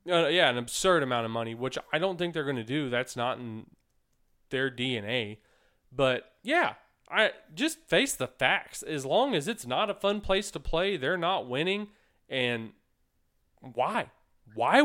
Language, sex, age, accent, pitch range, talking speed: English, male, 20-39, American, 120-185 Hz, 170 wpm